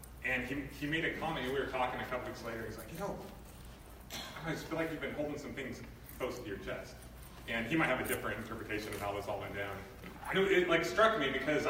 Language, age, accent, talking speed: English, 30-49, American, 260 wpm